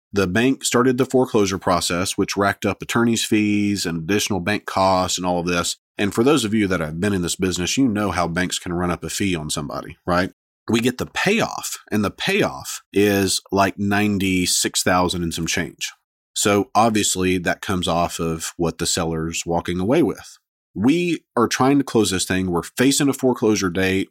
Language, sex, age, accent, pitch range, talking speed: English, male, 40-59, American, 85-105 Hz, 195 wpm